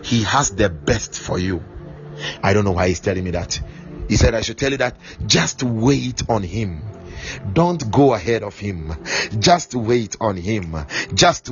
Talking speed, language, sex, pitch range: 180 wpm, English, male, 110-165 Hz